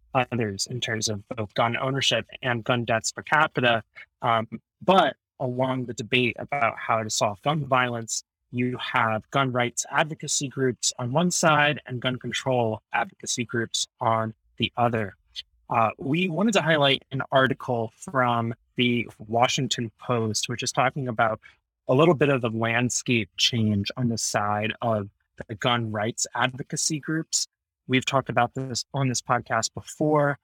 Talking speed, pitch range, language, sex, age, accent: 155 wpm, 115-135 Hz, English, male, 20-39, American